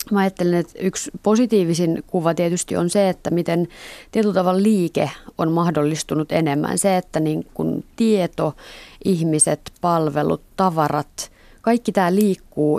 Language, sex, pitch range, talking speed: Finnish, female, 155-185 Hz, 125 wpm